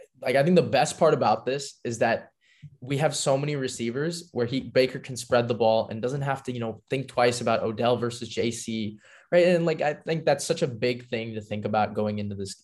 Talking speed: 235 wpm